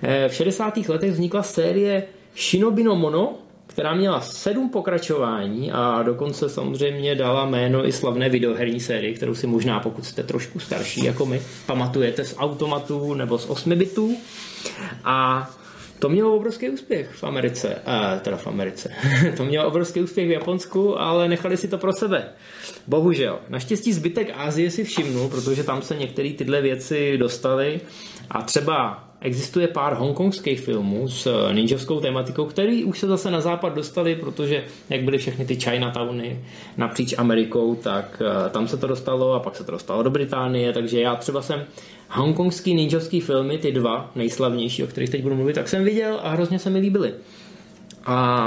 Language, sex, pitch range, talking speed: Czech, male, 130-175 Hz, 165 wpm